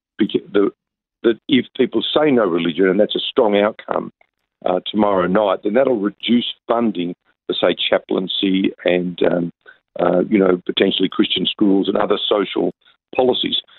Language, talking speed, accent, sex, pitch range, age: English, 145 wpm, Australian, male, 95-115 Hz, 50-69